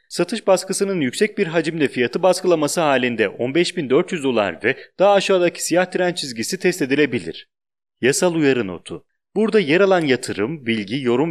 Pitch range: 120-185 Hz